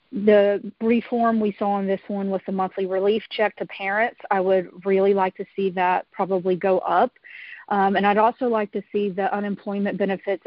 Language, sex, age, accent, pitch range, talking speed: English, female, 40-59, American, 185-210 Hz, 195 wpm